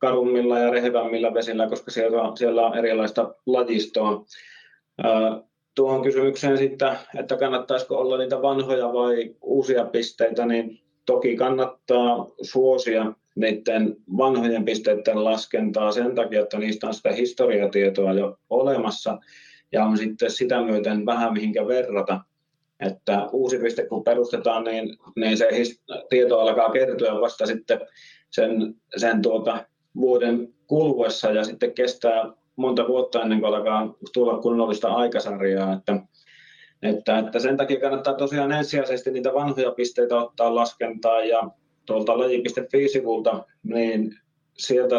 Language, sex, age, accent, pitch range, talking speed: Finnish, male, 30-49, native, 110-130 Hz, 125 wpm